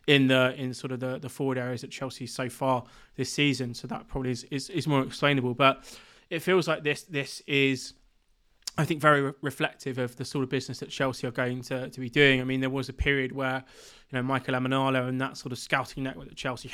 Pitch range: 130-135 Hz